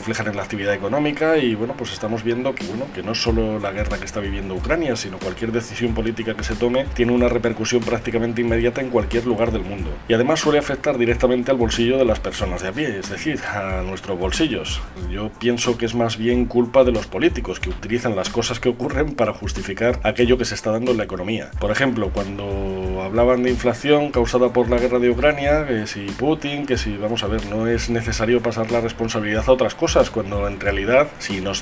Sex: male